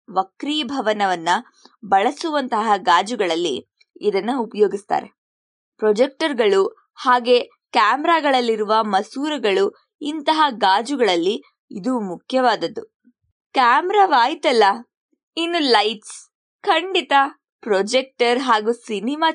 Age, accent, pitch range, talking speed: 20-39, native, 215-320 Hz, 60 wpm